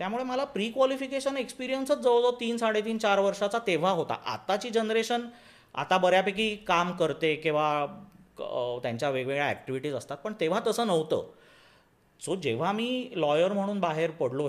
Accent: native